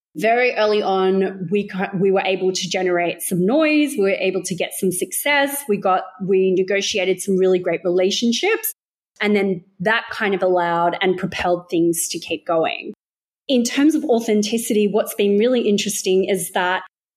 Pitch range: 190-230 Hz